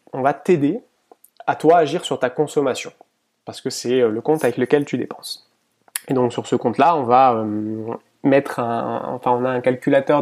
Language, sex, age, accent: French, male, 20-39, French